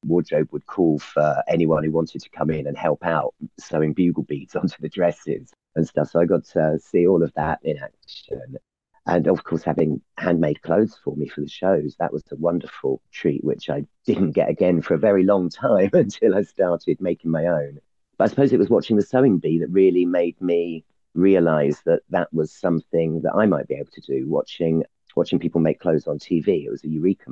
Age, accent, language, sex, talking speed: 40-59, British, English, male, 215 wpm